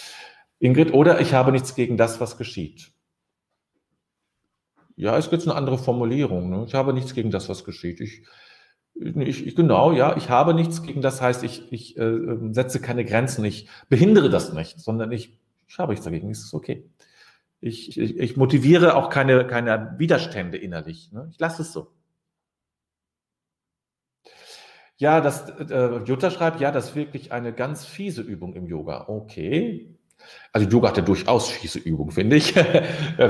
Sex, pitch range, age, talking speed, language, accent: male, 110-140 Hz, 40-59, 165 wpm, German, German